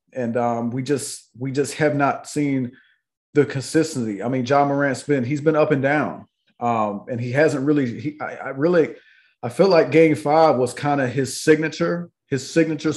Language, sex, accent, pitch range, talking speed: English, male, American, 130-150 Hz, 195 wpm